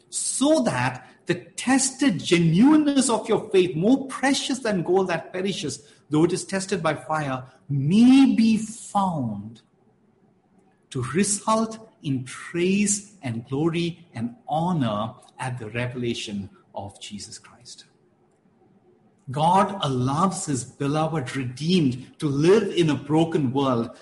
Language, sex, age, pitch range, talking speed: English, male, 50-69, 135-210 Hz, 120 wpm